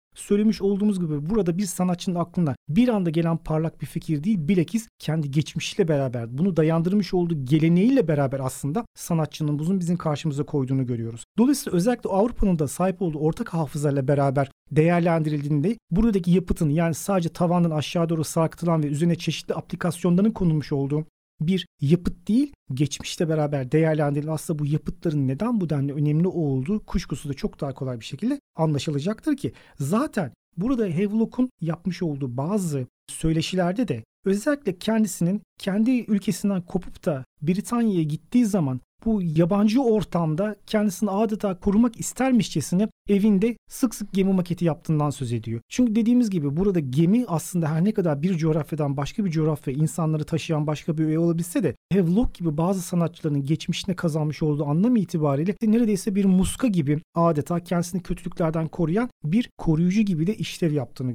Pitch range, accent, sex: 155-205 Hz, native, male